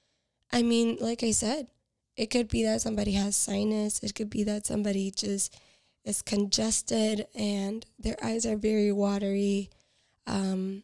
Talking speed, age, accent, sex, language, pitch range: 150 wpm, 10-29, American, female, English, 205-230 Hz